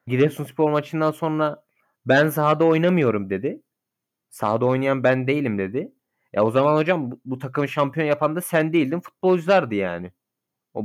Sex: male